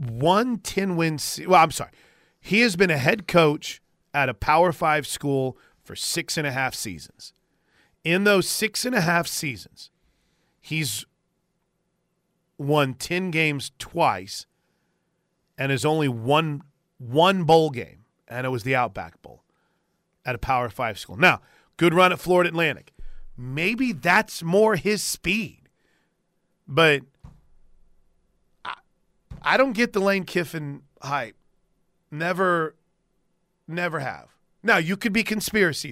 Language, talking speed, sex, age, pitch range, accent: English, 120 wpm, male, 40-59, 140-180 Hz, American